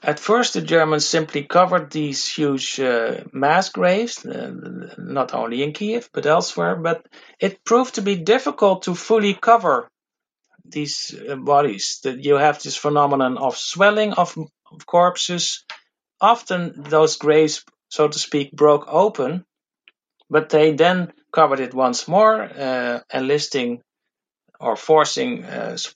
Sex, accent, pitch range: male, Dutch, 140-180 Hz